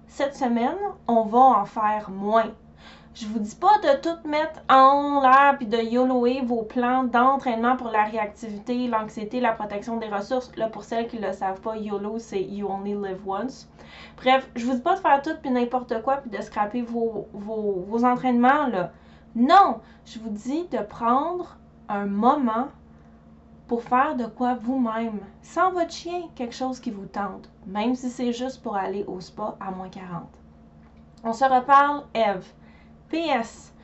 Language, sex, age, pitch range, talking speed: French, female, 20-39, 220-270 Hz, 175 wpm